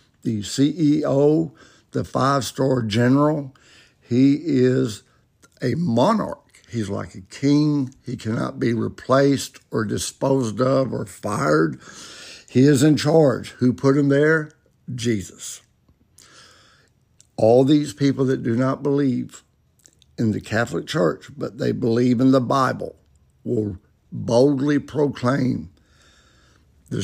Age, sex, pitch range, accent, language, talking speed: 60-79, male, 110-135 Hz, American, English, 115 wpm